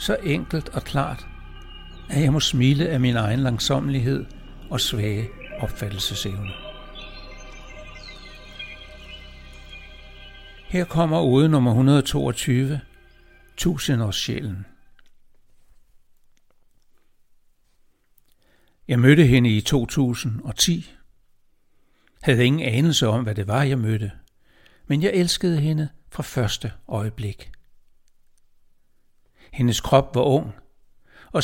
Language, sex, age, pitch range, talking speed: Danish, male, 60-79, 105-140 Hz, 90 wpm